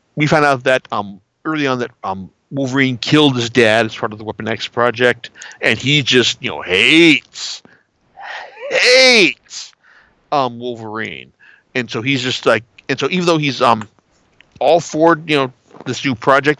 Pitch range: 115-145 Hz